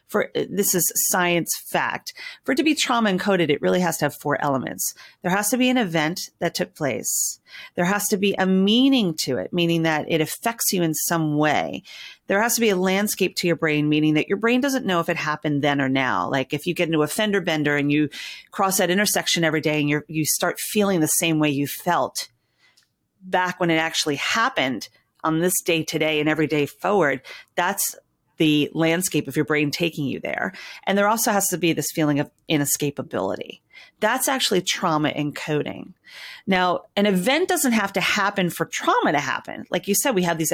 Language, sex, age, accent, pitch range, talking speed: English, female, 40-59, American, 150-195 Hz, 210 wpm